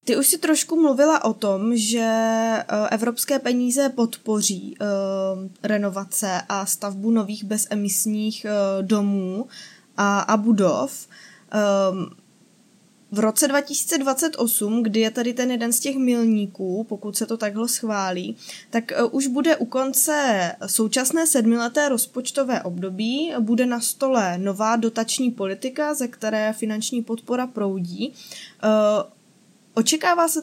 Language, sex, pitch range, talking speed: Czech, female, 210-255 Hz, 115 wpm